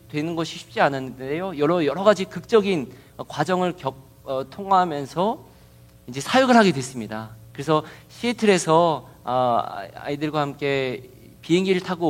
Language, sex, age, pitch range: Korean, male, 50-69, 125-200 Hz